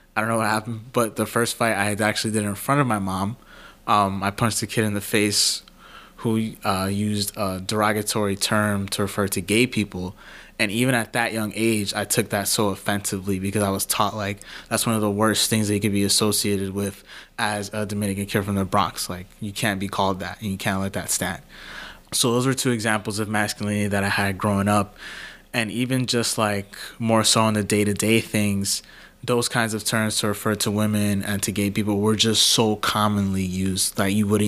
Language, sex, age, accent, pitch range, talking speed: English, male, 20-39, American, 100-110 Hz, 220 wpm